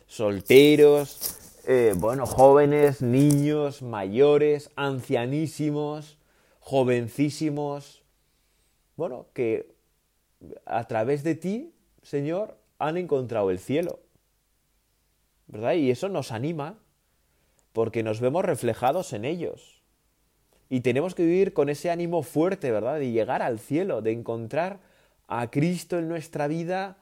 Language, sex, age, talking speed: Spanish, male, 30-49, 110 wpm